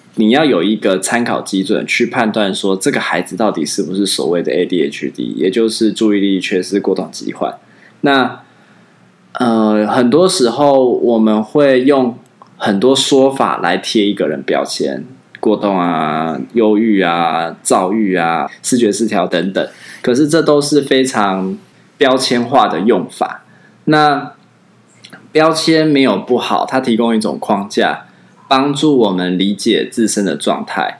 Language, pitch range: Chinese, 105-130 Hz